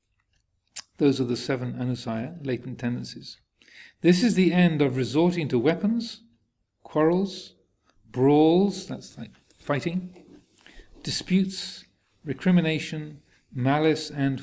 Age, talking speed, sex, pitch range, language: 40-59, 100 wpm, male, 125-175 Hz, English